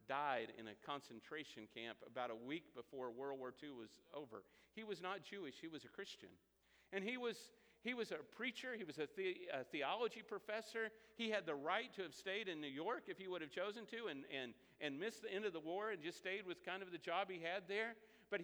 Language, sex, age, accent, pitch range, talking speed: English, male, 50-69, American, 145-225 Hz, 235 wpm